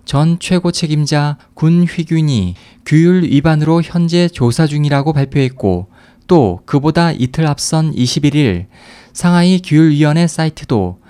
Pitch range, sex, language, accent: 120-165 Hz, male, Korean, native